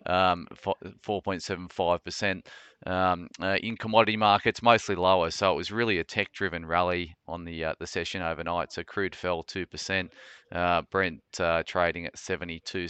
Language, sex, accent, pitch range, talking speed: English, male, Australian, 85-95 Hz, 165 wpm